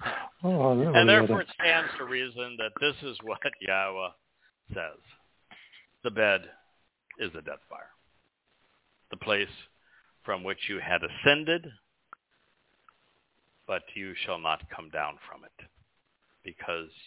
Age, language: 60-79, English